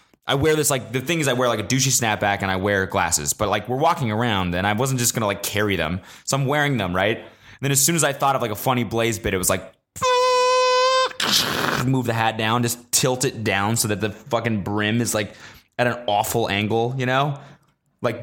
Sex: male